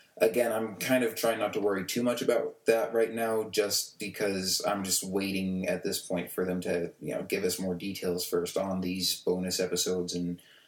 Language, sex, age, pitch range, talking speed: English, male, 30-49, 90-115 Hz, 210 wpm